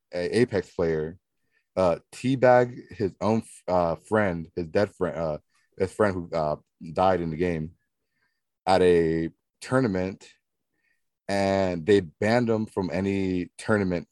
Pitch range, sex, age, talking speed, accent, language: 85-105 Hz, male, 30-49, 130 wpm, American, English